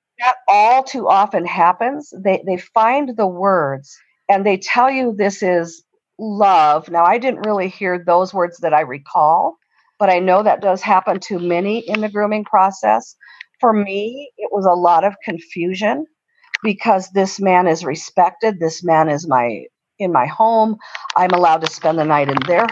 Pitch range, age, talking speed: 170-215 Hz, 50-69, 175 wpm